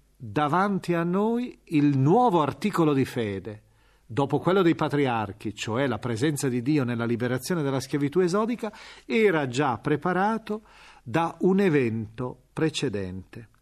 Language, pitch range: Italian, 120-165 Hz